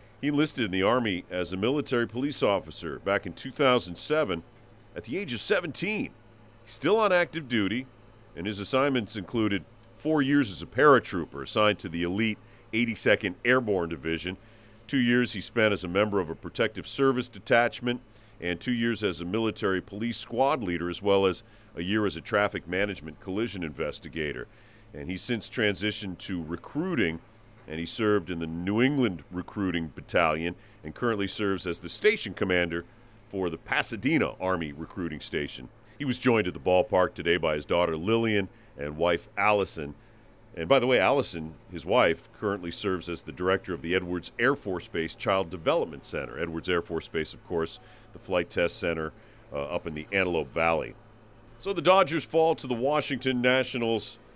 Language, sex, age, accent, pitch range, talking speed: English, male, 40-59, American, 90-120 Hz, 175 wpm